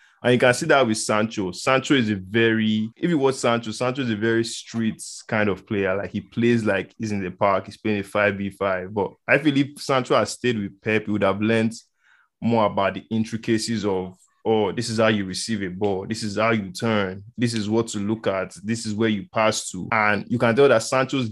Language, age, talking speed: English, 20-39, 235 wpm